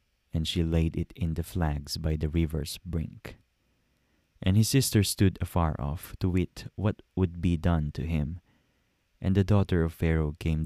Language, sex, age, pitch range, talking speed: English, male, 20-39, 75-95 Hz, 175 wpm